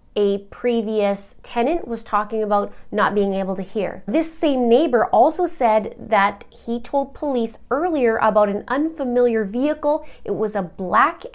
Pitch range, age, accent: 200-255 Hz, 30-49, American